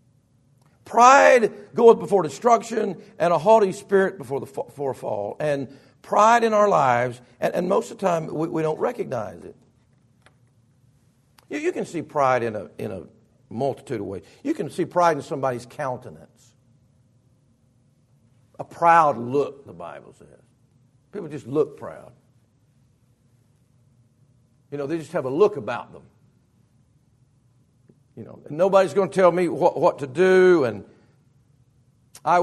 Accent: American